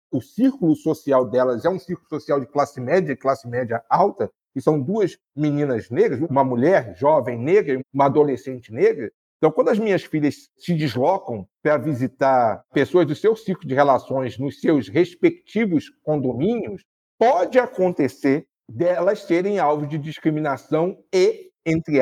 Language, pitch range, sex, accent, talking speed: Portuguese, 150-245 Hz, male, Brazilian, 155 wpm